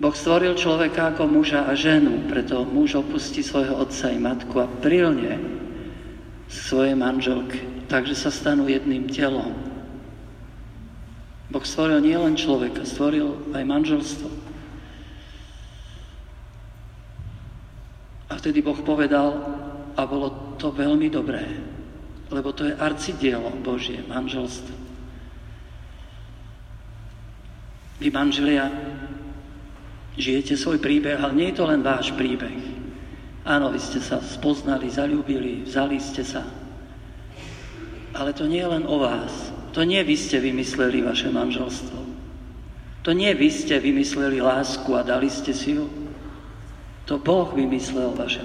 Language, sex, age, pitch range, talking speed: Slovak, male, 50-69, 125-150 Hz, 120 wpm